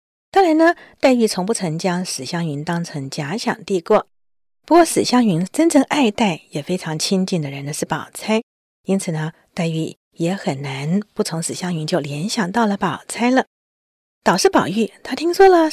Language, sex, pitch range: Chinese, female, 165-245 Hz